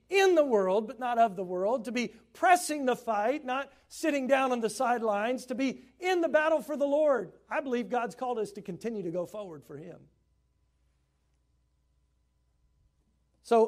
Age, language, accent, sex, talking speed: 50-69, English, American, male, 175 wpm